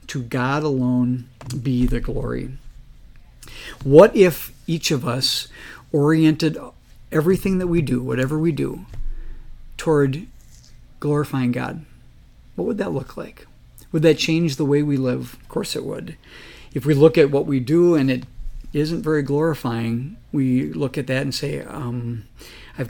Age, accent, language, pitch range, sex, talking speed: 50-69, American, English, 130-165 Hz, male, 150 wpm